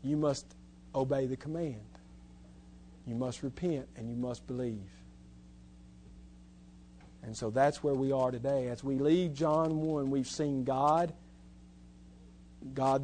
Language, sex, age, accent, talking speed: English, male, 50-69, American, 130 wpm